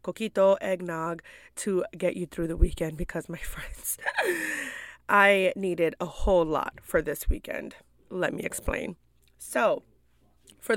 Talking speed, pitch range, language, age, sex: 135 wpm, 175-215 Hz, English, 20-39, female